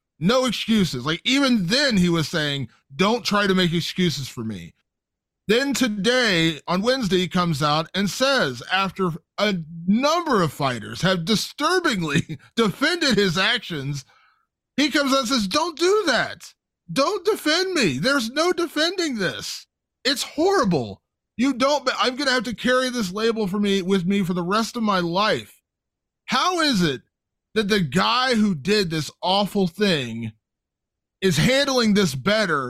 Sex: male